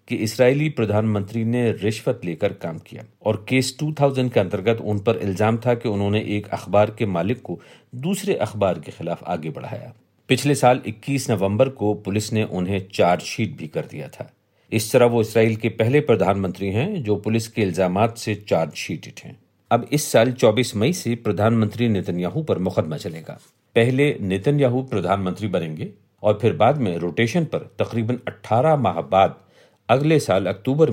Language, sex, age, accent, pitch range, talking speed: Hindi, male, 50-69, native, 100-125 Hz, 85 wpm